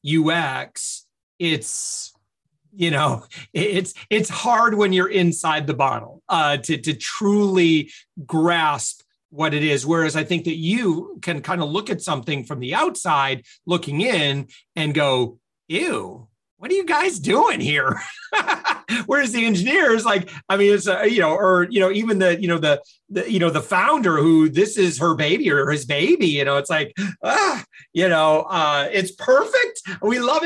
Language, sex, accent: English, male, American